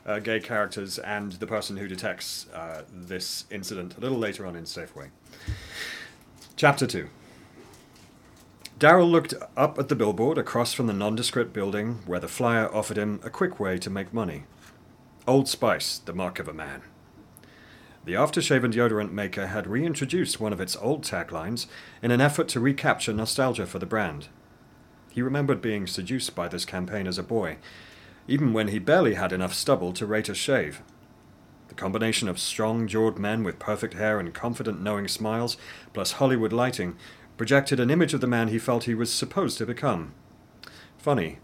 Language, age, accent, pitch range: English, 40-59, British, 100-120 Hz